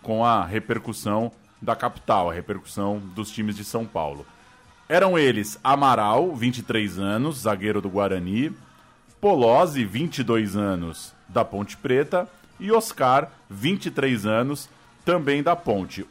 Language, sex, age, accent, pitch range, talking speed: Portuguese, male, 20-39, Brazilian, 105-140 Hz, 125 wpm